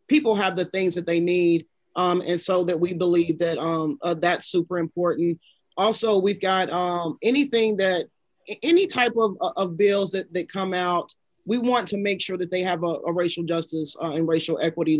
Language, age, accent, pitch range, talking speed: English, 30-49, American, 175-195 Hz, 200 wpm